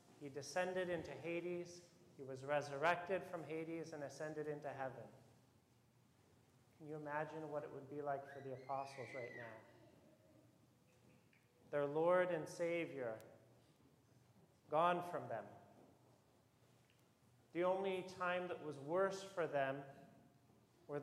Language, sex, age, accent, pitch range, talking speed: English, male, 40-59, American, 135-175 Hz, 120 wpm